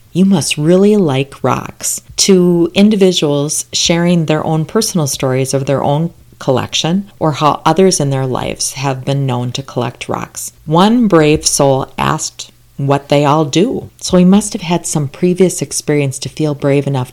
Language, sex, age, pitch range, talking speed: English, female, 40-59, 130-160 Hz, 170 wpm